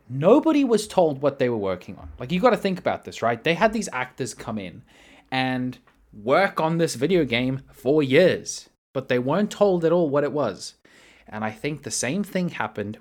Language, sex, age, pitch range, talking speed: English, male, 20-39, 110-180 Hz, 210 wpm